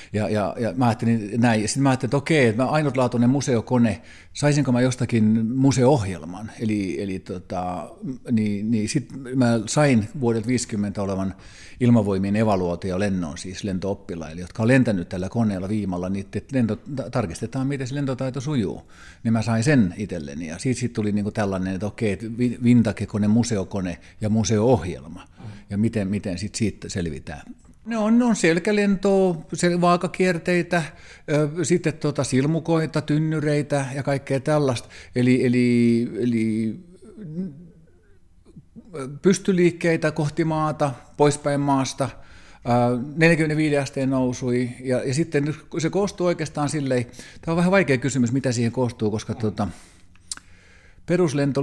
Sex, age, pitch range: male, 50-69, 105-145 Hz